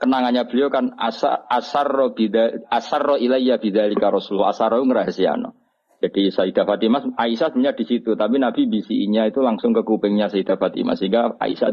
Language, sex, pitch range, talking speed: Malay, male, 95-125 Hz, 150 wpm